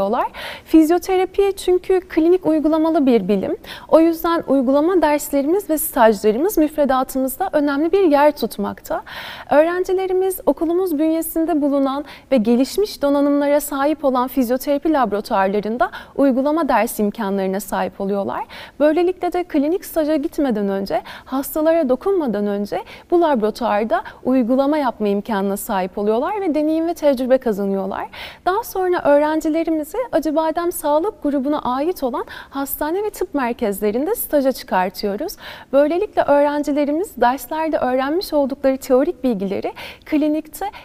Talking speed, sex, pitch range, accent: 110 wpm, female, 240-330 Hz, native